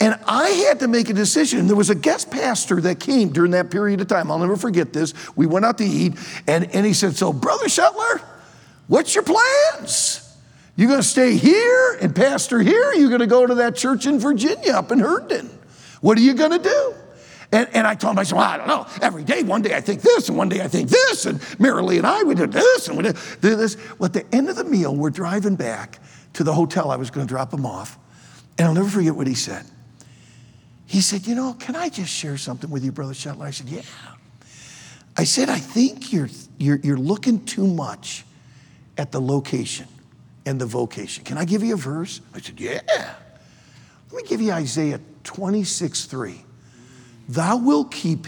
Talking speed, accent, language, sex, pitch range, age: 220 wpm, American, English, male, 140-225 Hz, 50-69